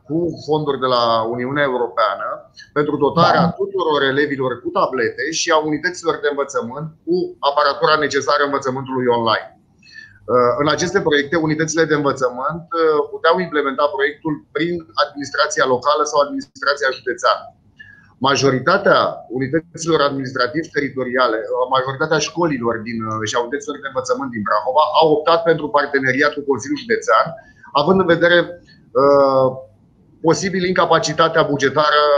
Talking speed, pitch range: 115 wpm, 130-165 Hz